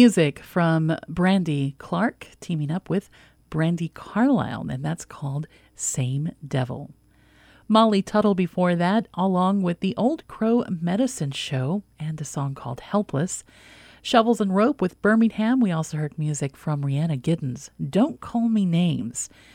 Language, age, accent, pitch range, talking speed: English, 40-59, American, 145-210 Hz, 140 wpm